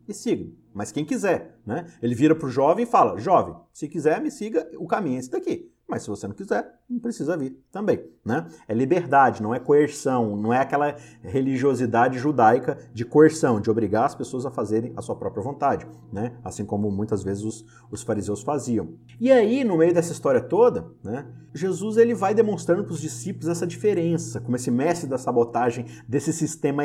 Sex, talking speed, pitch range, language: male, 195 wpm, 120-165 Hz, Portuguese